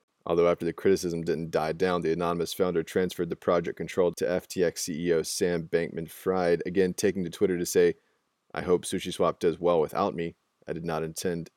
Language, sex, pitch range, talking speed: English, male, 85-95 Hz, 185 wpm